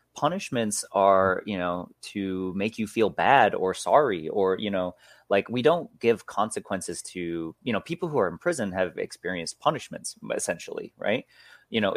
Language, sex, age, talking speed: English, male, 30-49, 170 wpm